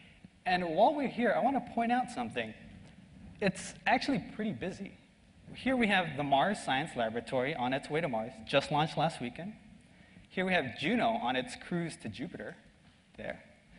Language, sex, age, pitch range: Chinese, male, 30-49, 130-195 Hz